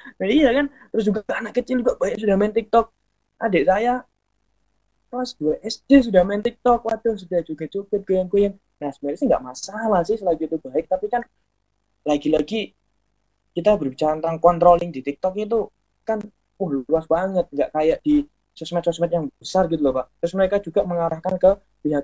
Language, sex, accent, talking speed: Indonesian, male, native, 170 wpm